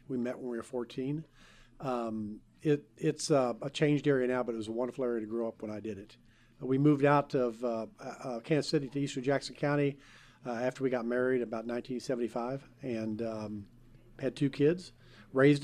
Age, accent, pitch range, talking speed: 50-69, American, 120-140 Hz, 200 wpm